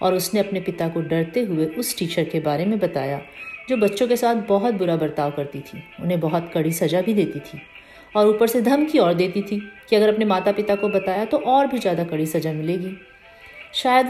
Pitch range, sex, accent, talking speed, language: 170-220 Hz, female, native, 215 wpm, Hindi